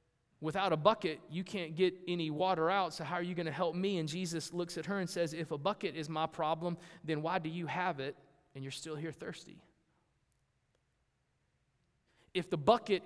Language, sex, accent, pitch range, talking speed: English, male, American, 145-195 Hz, 200 wpm